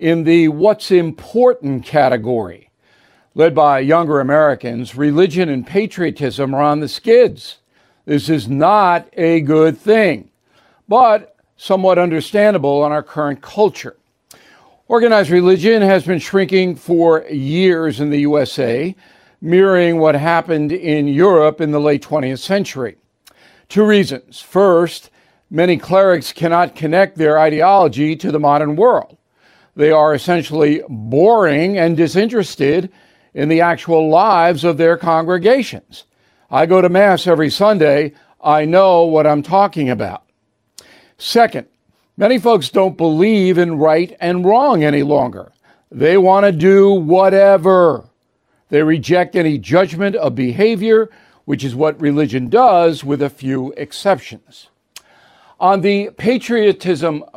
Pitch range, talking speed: 150-190 Hz, 125 wpm